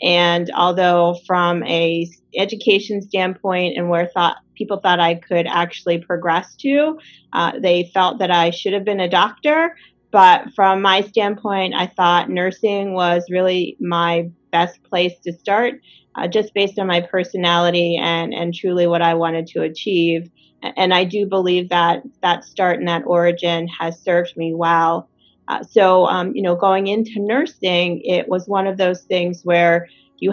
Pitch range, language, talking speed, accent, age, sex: 175-195 Hz, English, 165 wpm, American, 30-49, female